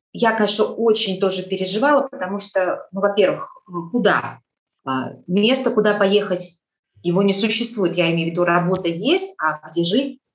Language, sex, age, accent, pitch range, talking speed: Russian, female, 30-49, native, 175-225 Hz, 145 wpm